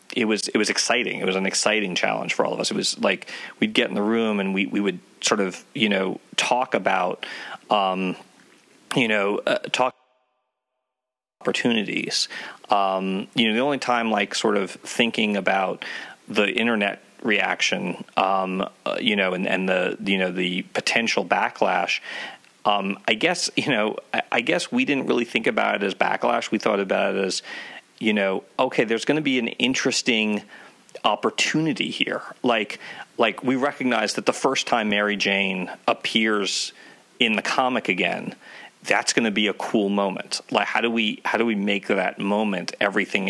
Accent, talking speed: American, 180 wpm